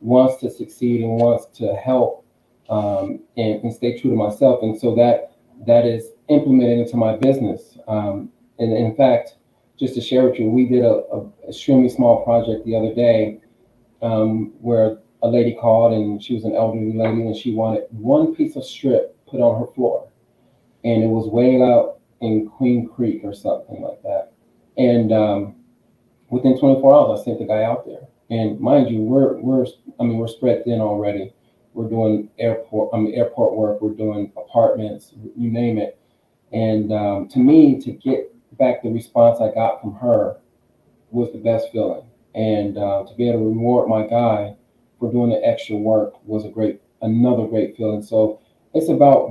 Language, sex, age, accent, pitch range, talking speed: English, male, 30-49, American, 110-125 Hz, 185 wpm